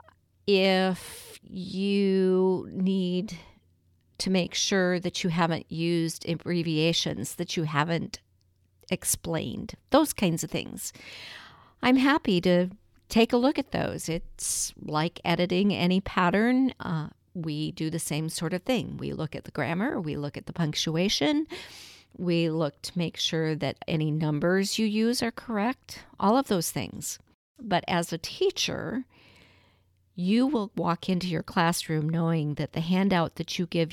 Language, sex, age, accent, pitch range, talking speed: English, female, 50-69, American, 155-190 Hz, 145 wpm